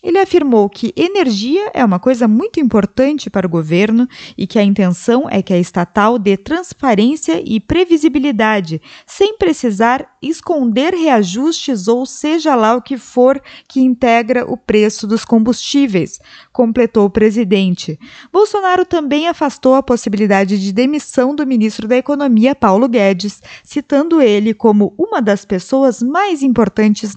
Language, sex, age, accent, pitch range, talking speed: Portuguese, female, 20-39, Brazilian, 205-280 Hz, 140 wpm